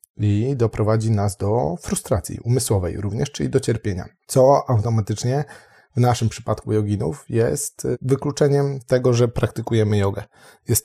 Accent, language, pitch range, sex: native, Polish, 100-115 Hz, male